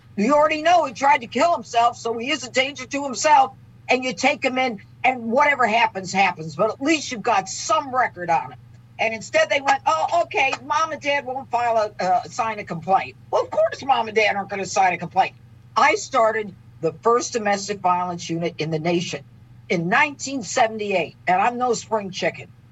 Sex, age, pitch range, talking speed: female, 50-69, 175-260 Hz, 205 wpm